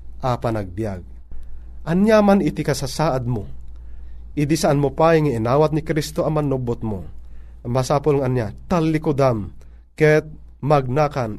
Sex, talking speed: male, 115 wpm